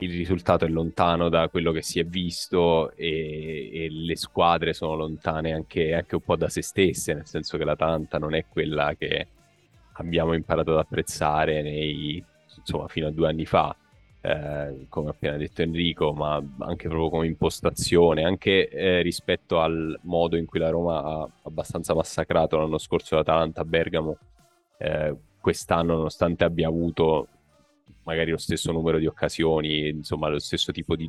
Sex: male